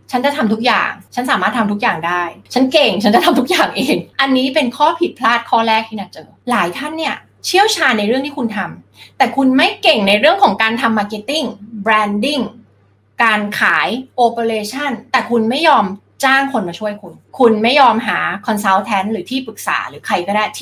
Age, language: 20-39, Thai